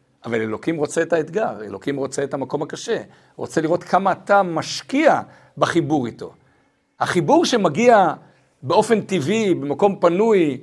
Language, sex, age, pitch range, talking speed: Hebrew, male, 60-79, 150-230 Hz, 130 wpm